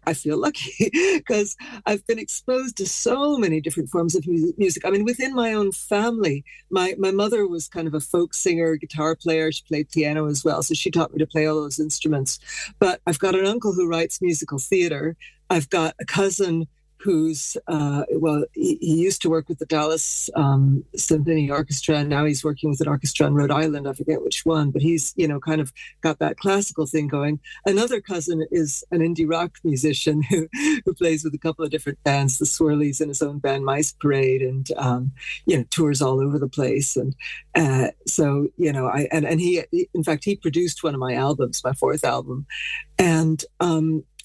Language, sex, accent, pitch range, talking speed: English, female, American, 145-175 Hz, 205 wpm